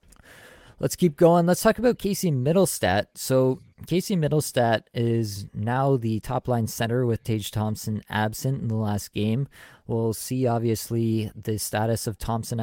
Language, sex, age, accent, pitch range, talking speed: English, male, 20-39, American, 110-125 Hz, 150 wpm